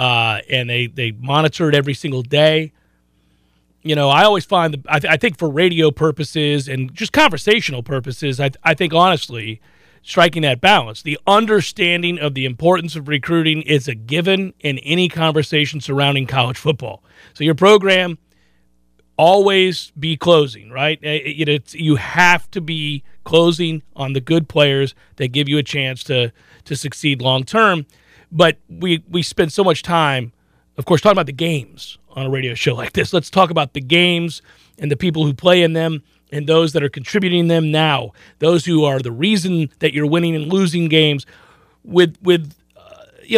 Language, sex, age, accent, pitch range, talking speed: English, male, 40-59, American, 135-175 Hz, 185 wpm